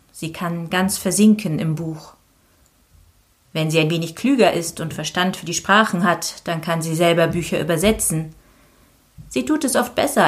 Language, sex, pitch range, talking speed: German, female, 160-220 Hz, 170 wpm